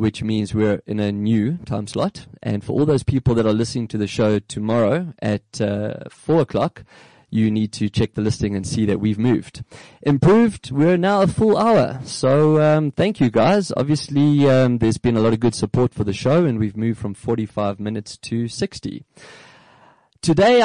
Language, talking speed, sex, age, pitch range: English, 195 wpm, male, 20-39, 110-135 Hz